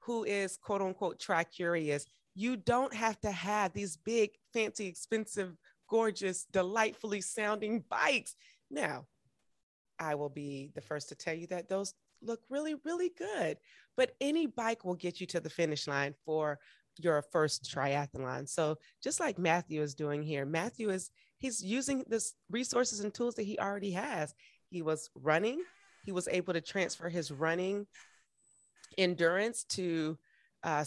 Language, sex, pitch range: English, female, 150-205 Hz